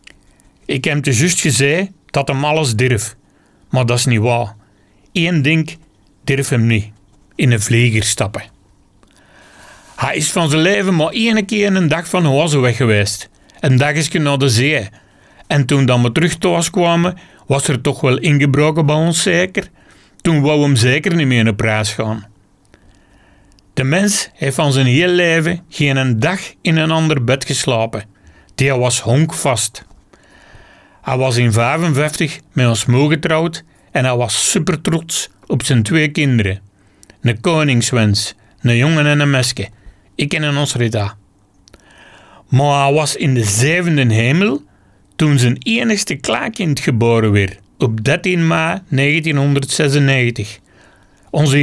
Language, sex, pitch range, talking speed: Dutch, male, 110-155 Hz, 155 wpm